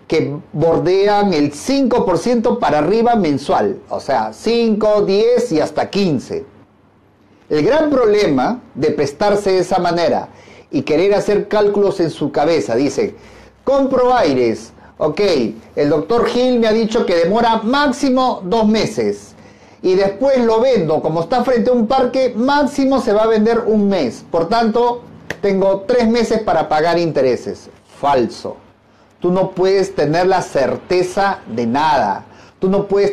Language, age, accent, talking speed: Spanish, 40-59, Mexican, 145 wpm